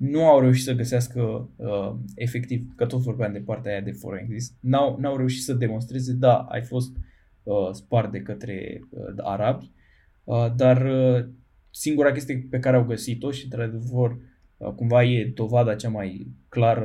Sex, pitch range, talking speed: male, 110-135 Hz, 165 wpm